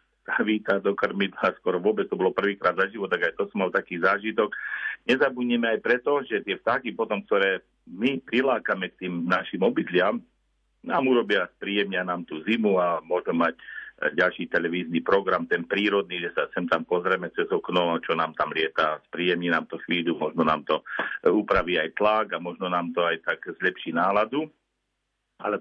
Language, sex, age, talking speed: Slovak, male, 50-69, 180 wpm